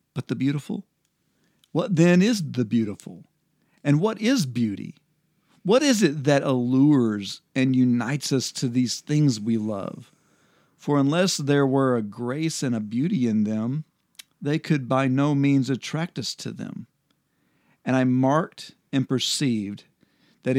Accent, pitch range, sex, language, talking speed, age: American, 125-150 Hz, male, English, 150 wpm, 50-69